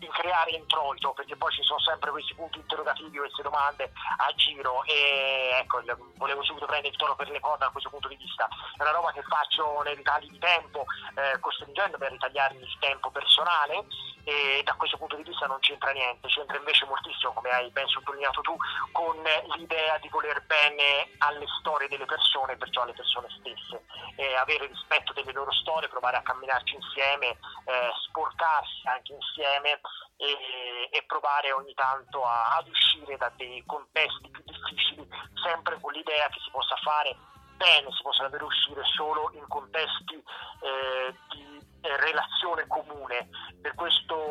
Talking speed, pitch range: 170 wpm, 135-155 Hz